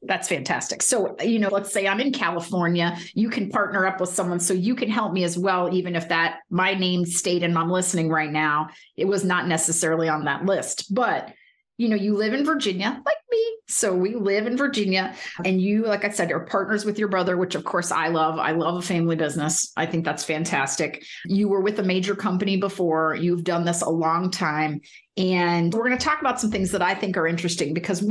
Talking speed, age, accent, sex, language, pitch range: 225 wpm, 30-49, American, female, English, 170-215 Hz